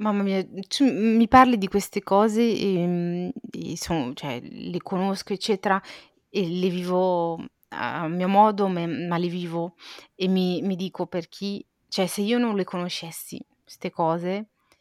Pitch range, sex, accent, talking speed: 170-205 Hz, female, native, 155 wpm